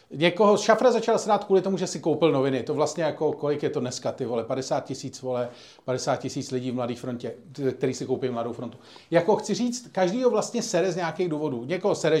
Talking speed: 220 wpm